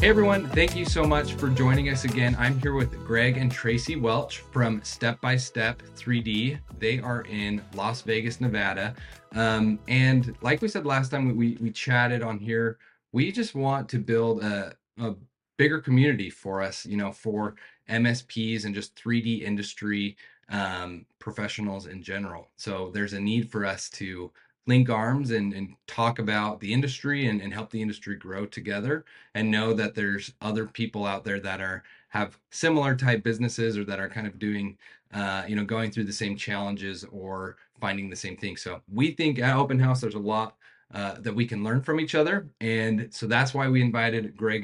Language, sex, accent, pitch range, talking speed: English, male, American, 100-120 Hz, 190 wpm